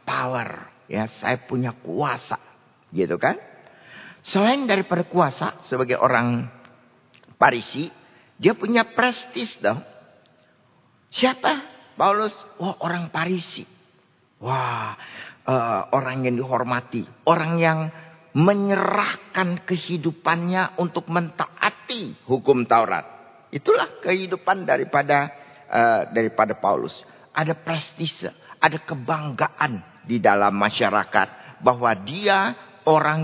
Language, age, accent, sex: Indonesian, 50-69, native, male